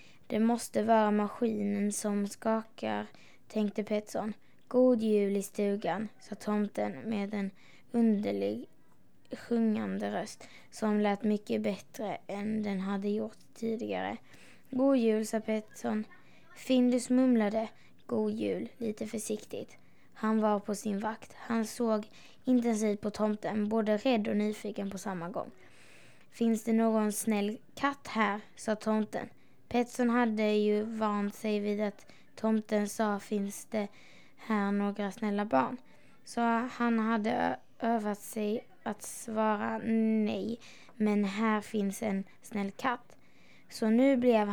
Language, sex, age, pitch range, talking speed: Swedish, female, 20-39, 210-230 Hz, 130 wpm